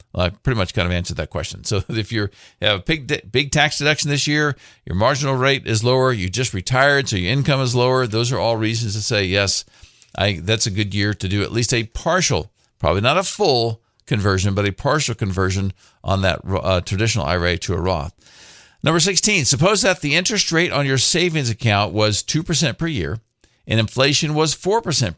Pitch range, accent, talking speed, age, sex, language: 100-140 Hz, American, 210 wpm, 50-69, male, English